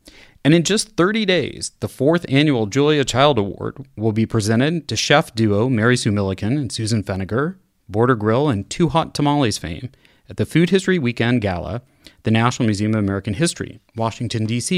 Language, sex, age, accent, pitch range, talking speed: English, male, 30-49, American, 105-140 Hz, 180 wpm